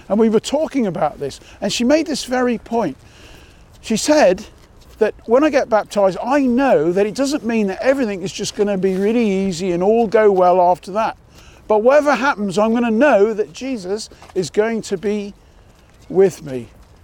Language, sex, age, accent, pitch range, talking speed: English, male, 50-69, British, 180-245 Hz, 195 wpm